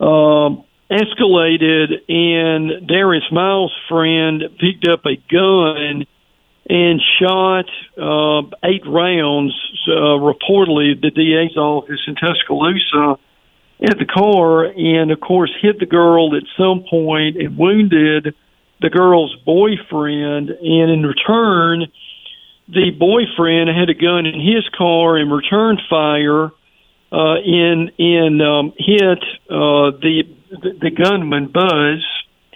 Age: 50-69